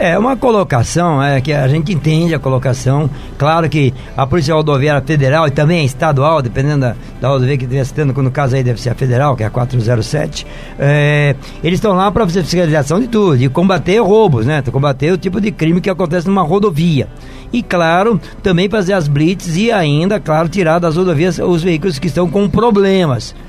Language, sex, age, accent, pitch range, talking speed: Portuguese, male, 60-79, Brazilian, 145-190 Hz, 200 wpm